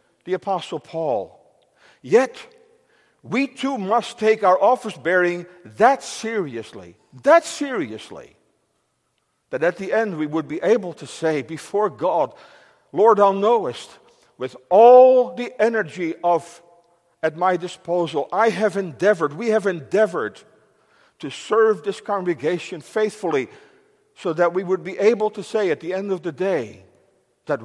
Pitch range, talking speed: 170-240 Hz, 140 wpm